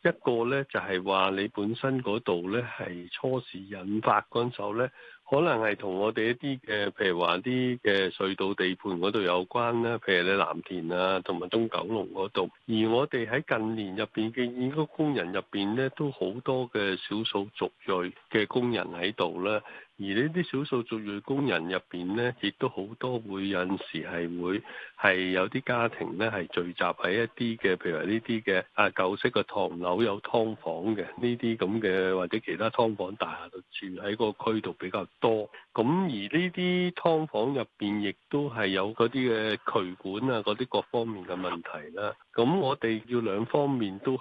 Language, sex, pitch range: Chinese, male, 95-125 Hz